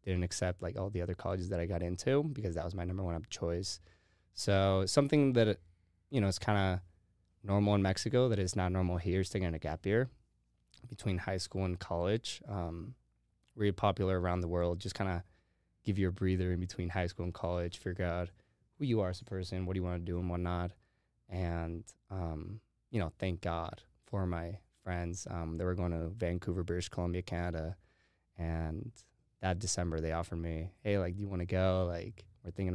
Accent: American